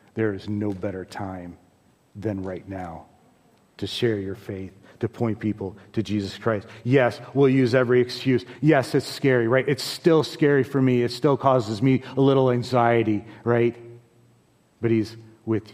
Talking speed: 165 wpm